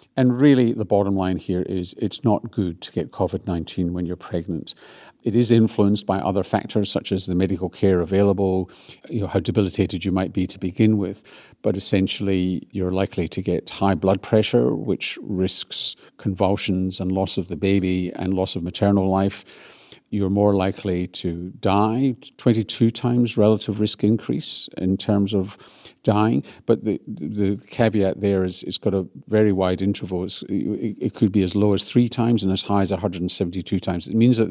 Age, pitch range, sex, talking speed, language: 50-69, 95-105 Hz, male, 175 wpm, English